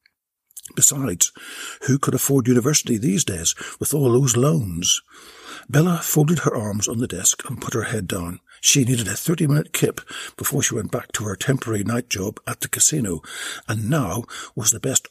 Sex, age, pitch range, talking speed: male, 60-79, 100-140 Hz, 180 wpm